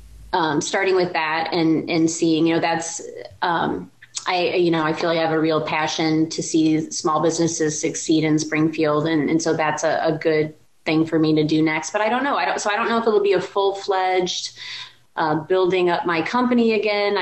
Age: 30-49